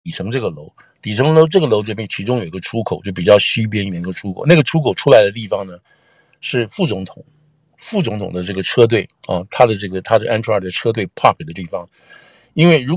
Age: 60-79